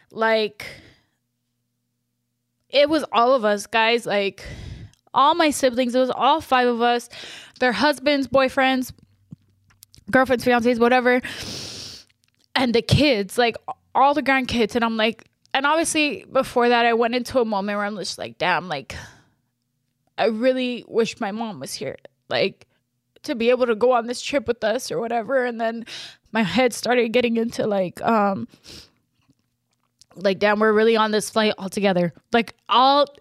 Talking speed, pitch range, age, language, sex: 160 wpm, 210-260 Hz, 10-29, English, female